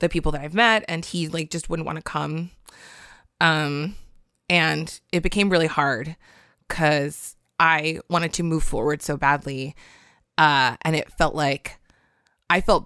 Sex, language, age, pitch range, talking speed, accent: female, English, 20-39, 155-185 Hz, 160 wpm, American